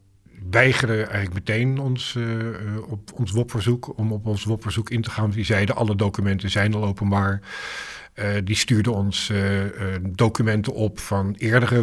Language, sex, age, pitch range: Dutch, male, 50-69, 95-115 Hz